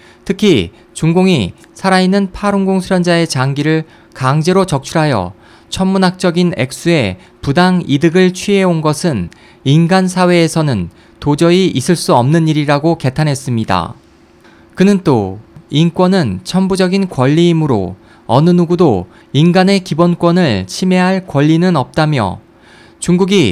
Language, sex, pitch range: Korean, male, 135-180 Hz